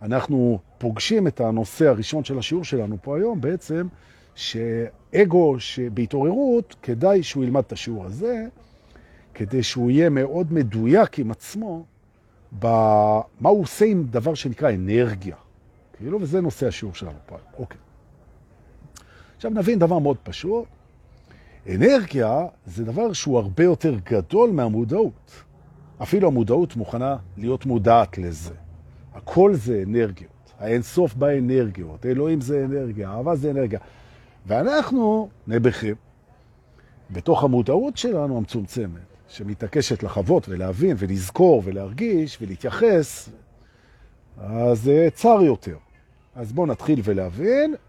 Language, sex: Hebrew, male